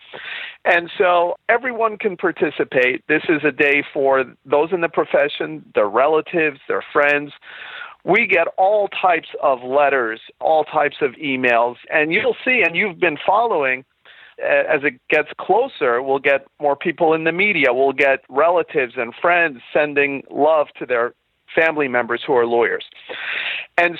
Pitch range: 140-180 Hz